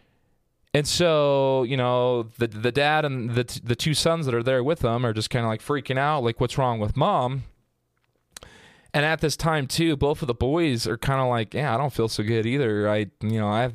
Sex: male